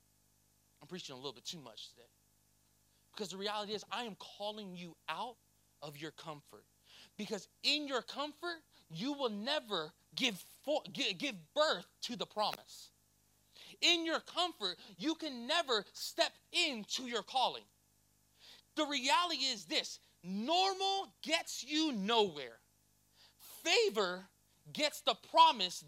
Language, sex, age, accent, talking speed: English, male, 30-49, American, 125 wpm